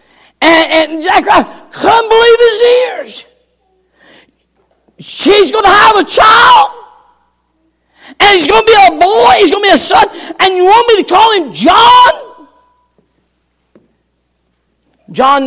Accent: American